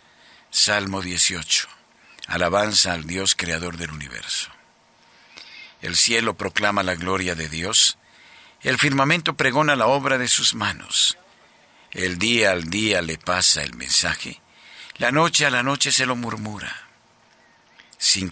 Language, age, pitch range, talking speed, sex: Spanish, 60-79, 90-135 Hz, 130 wpm, male